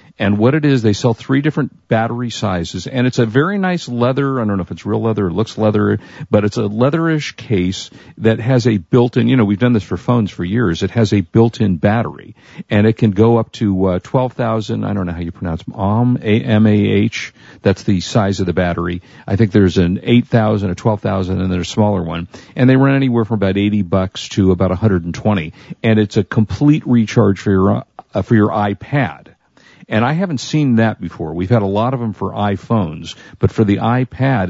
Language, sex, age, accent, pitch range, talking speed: English, male, 50-69, American, 95-120 Hz, 215 wpm